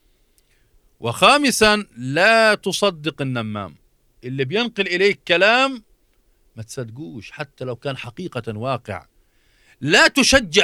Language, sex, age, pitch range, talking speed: Arabic, male, 40-59, 115-190 Hz, 95 wpm